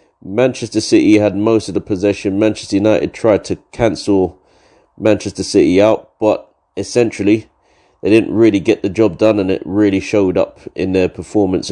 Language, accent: English, British